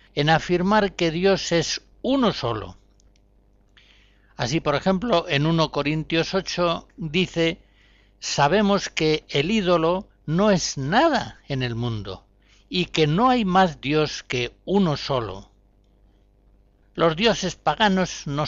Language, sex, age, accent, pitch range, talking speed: Spanish, male, 60-79, Spanish, 110-175 Hz, 125 wpm